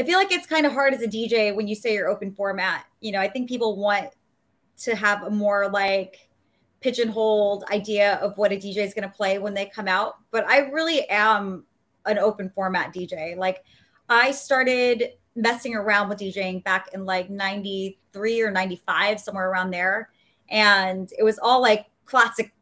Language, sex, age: English, female, 20-39